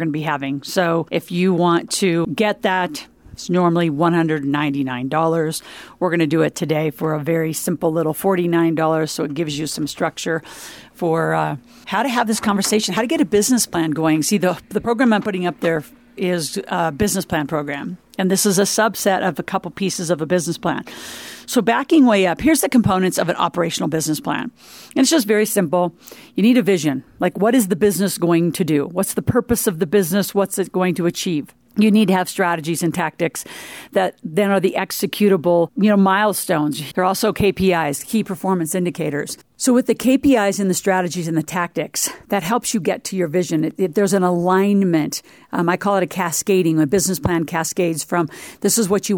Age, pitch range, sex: 50-69, 165-205 Hz, female